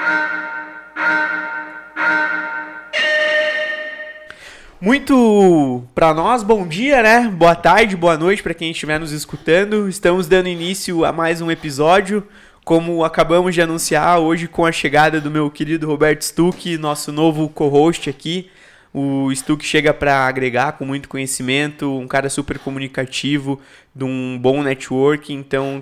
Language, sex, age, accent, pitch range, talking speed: Portuguese, male, 20-39, Brazilian, 130-165 Hz, 130 wpm